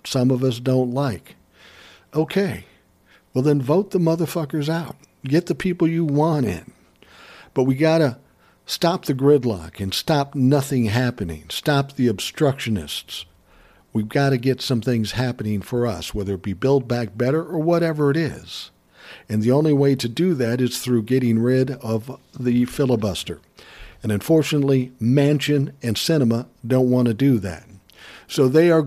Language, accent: English, American